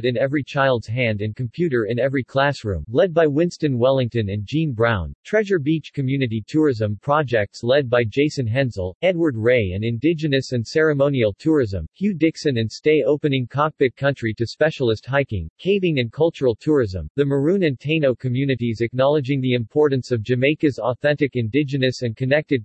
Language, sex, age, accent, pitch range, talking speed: English, male, 40-59, American, 120-150 Hz, 160 wpm